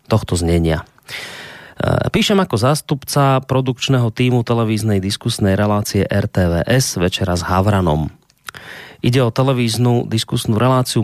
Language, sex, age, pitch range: Slovak, male, 30-49, 95-125 Hz